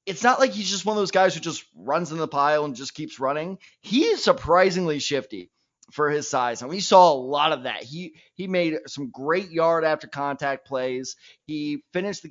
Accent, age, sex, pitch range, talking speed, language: American, 20-39, male, 140-180 Hz, 220 wpm, English